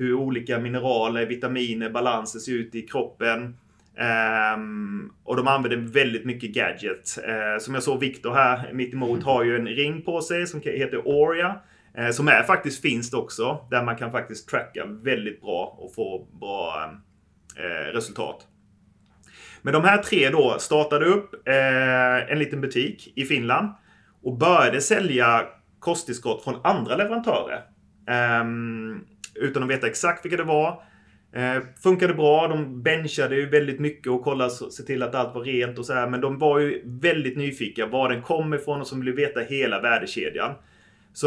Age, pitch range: 30-49, 115-150 Hz